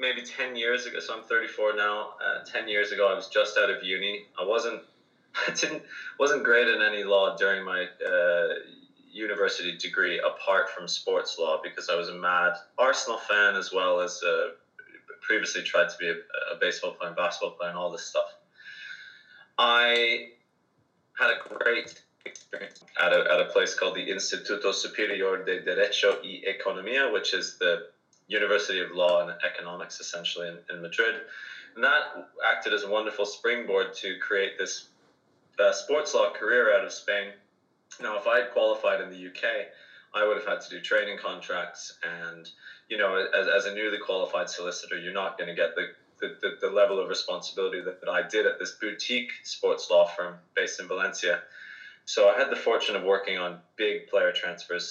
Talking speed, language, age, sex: 185 wpm, English, 20-39, male